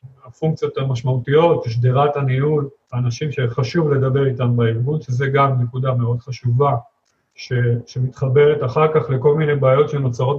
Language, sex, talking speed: Hebrew, male, 140 wpm